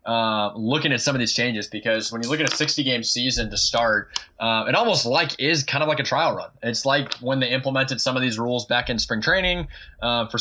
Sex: male